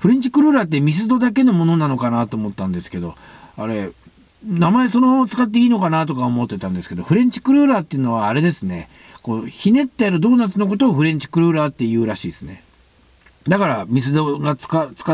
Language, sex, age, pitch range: Japanese, male, 50-69, 115-190 Hz